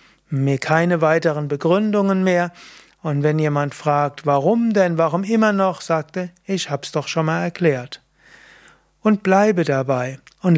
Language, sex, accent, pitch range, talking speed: German, male, German, 150-185 Hz, 140 wpm